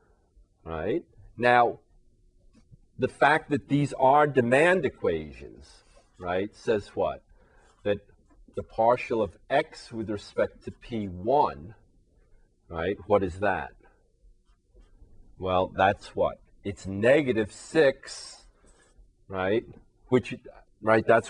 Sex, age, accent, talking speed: male, 40-59, American, 100 wpm